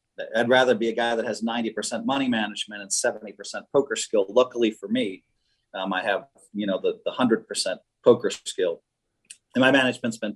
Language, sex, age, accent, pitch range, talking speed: English, male, 40-59, American, 110-135 Hz, 185 wpm